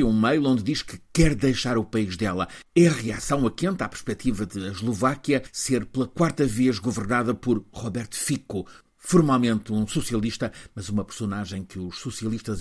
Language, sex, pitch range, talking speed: Portuguese, male, 100-130 Hz, 170 wpm